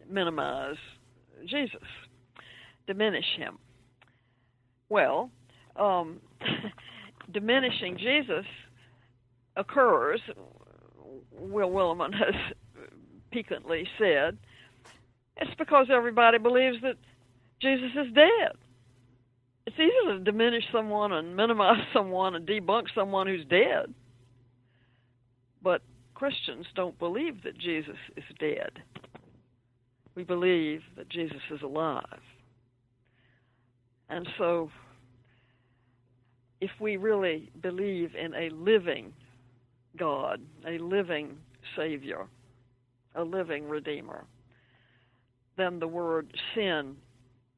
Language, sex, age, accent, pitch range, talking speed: English, female, 60-79, American, 125-190 Hz, 85 wpm